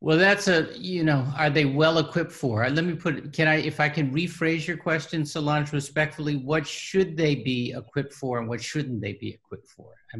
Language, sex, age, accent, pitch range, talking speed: English, male, 50-69, American, 115-150 Hz, 225 wpm